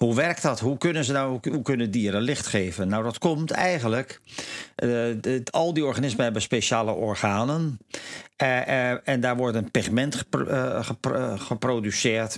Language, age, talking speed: Dutch, 50-69, 135 wpm